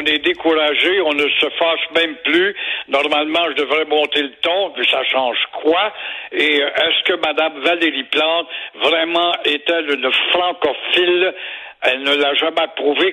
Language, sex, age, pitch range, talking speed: French, male, 60-79, 155-195 Hz, 155 wpm